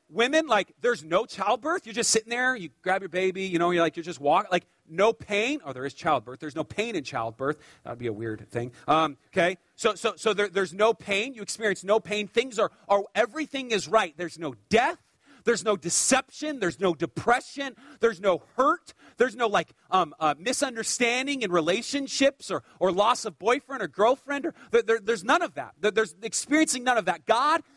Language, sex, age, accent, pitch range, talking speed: English, male, 40-59, American, 190-270 Hz, 210 wpm